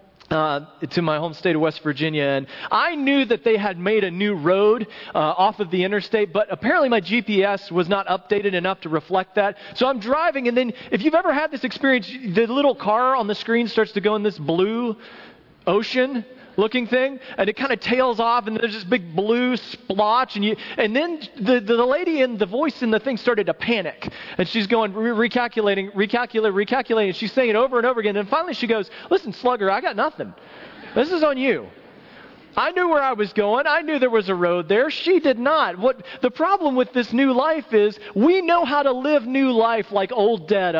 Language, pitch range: English, 185-250 Hz